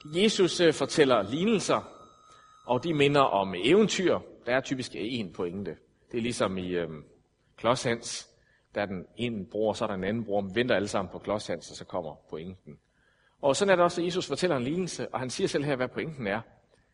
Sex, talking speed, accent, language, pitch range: male, 205 wpm, native, Danish, 105-140 Hz